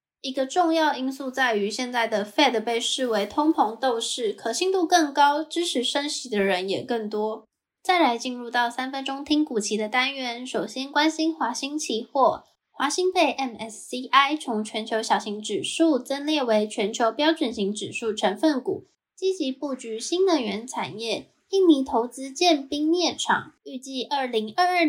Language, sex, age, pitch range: Chinese, female, 10-29, 230-305 Hz